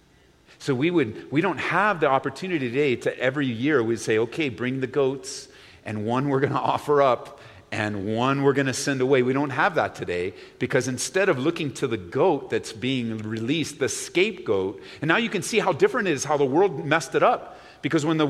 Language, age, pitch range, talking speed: English, 40-59, 145-220 Hz, 220 wpm